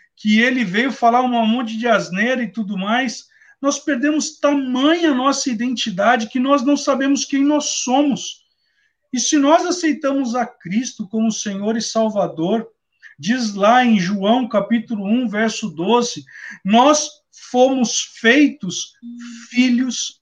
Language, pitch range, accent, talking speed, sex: Portuguese, 205-260 Hz, Brazilian, 135 wpm, male